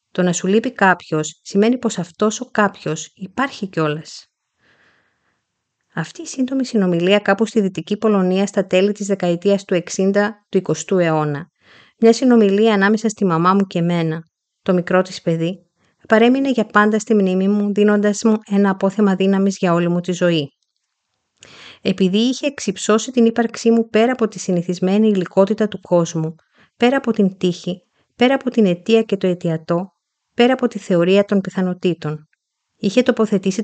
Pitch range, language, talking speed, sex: 180-220 Hz, Greek, 155 wpm, female